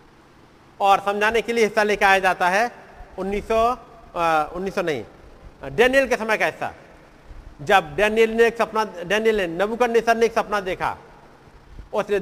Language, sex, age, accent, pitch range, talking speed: Hindi, male, 50-69, native, 185-240 Hz, 145 wpm